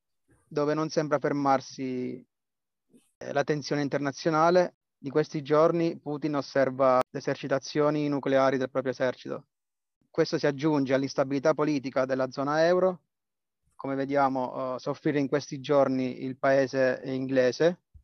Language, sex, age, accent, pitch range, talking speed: Italian, male, 30-49, native, 130-150 Hz, 115 wpm